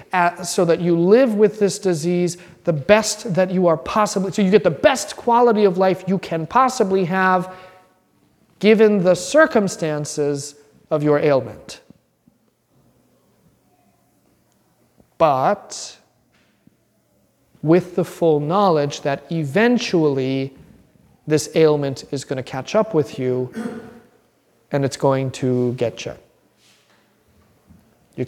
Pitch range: 150-185 Hz